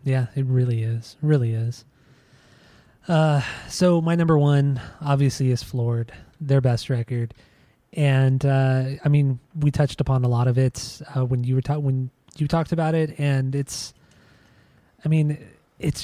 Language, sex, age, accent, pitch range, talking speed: English, male, 20-39, American, 125-150 Hz, 160 wpm